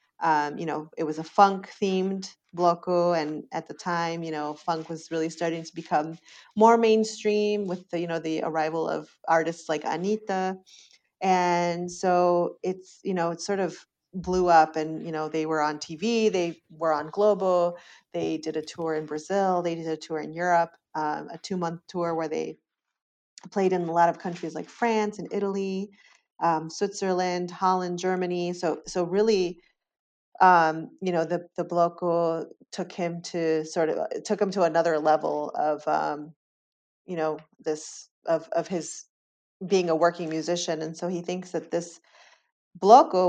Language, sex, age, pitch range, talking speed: English, female, 30-49, 160-180 Hz, 170 wpm